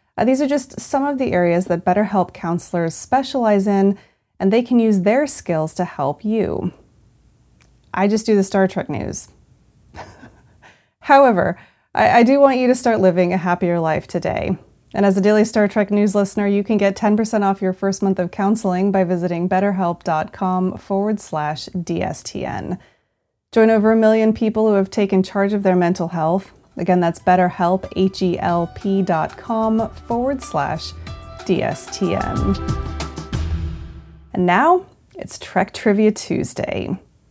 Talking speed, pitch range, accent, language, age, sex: 145 wpm, 175-225 Hz, American, English, 30-49, female